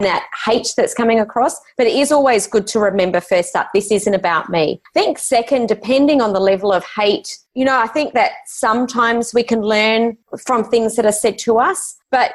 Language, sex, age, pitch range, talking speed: English, female, 30-49, 190-240 Hz, 210 wpm